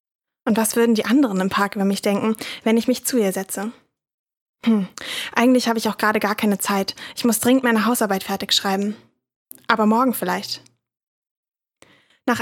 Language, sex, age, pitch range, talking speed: German, female, 10-29, 205-240 Hz, 175 wpm